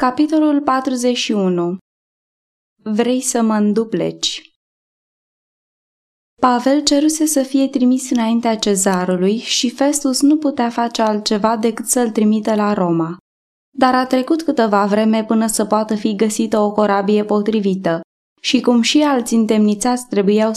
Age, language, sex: 20-39, Romanian, female